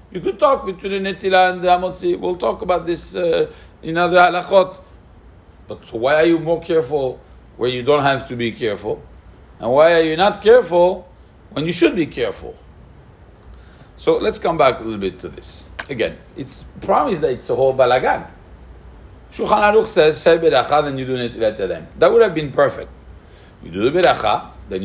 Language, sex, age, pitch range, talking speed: English, male, 60-79, 110-180 Hz, 190 wpm